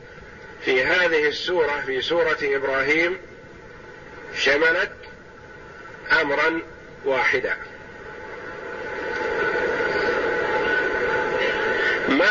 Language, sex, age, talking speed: Arabic, male, 50-69, 50 wpm